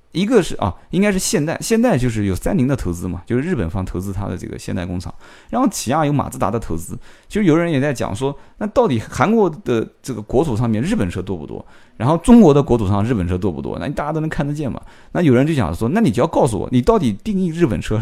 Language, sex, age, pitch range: Chinese, male, 20-39, 95-155 Hz